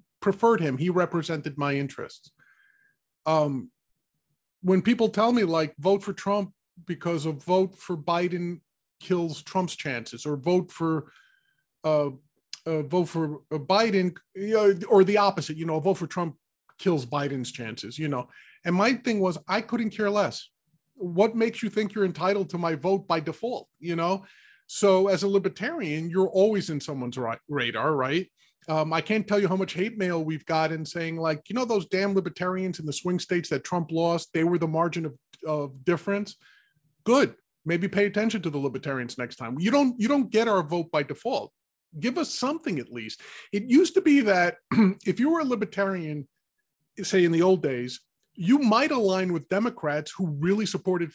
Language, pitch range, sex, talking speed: English, 155-200 Hz, male, 180 wpm